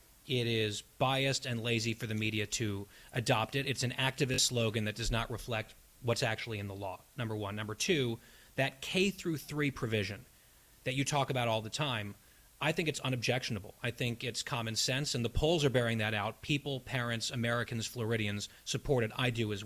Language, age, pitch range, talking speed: English, 30-49, 110-140 Hz, 195 wpm